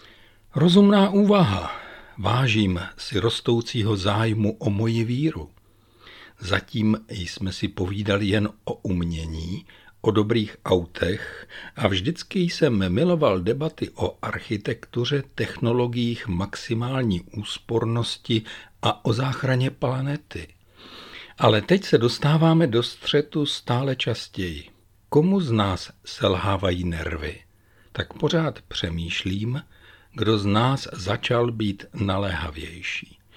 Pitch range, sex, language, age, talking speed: 100-140 Hz, male, Czech, 60-79, 100 wpm